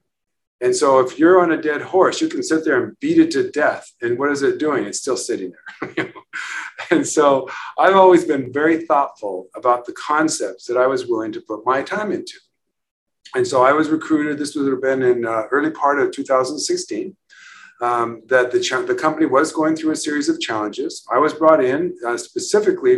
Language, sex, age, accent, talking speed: English, male, 50-69, American, 205 wpm